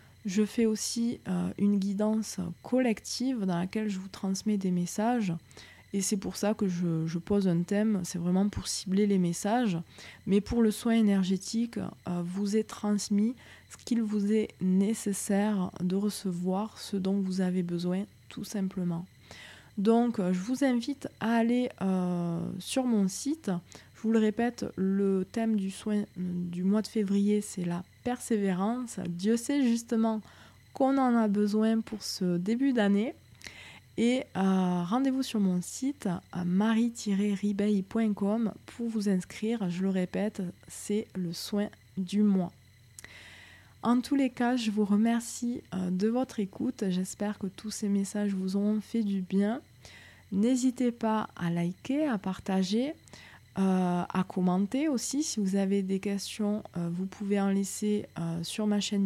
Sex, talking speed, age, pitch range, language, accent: female, 155 wpm, 20-39, 185-225 Hz, French, French